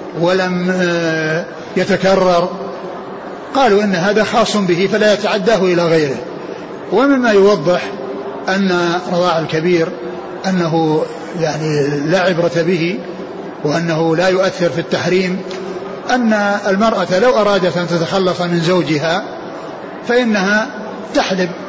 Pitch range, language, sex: 170-195 Hz, Arabic, male